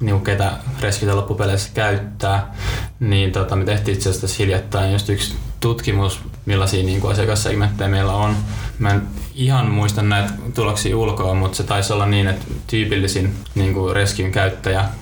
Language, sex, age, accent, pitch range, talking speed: Finnish, male, 20-39, native, 95-105 Hz, 145 wpm